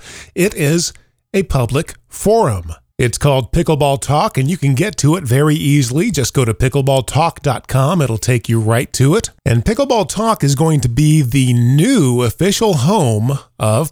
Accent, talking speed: American, 170 wpm